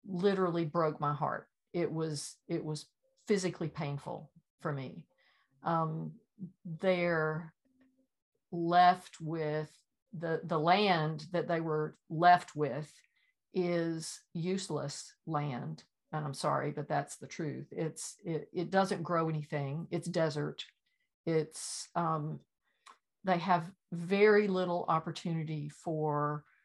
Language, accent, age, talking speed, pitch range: English, American, 50-69, 115 wpm, 155-185 Hz